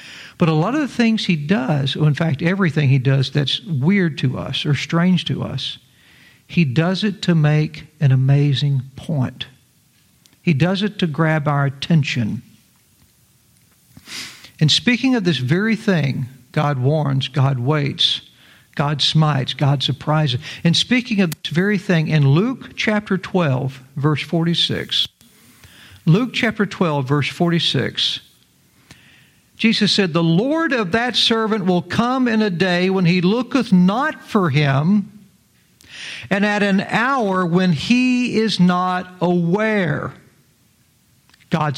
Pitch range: 145-215 Hz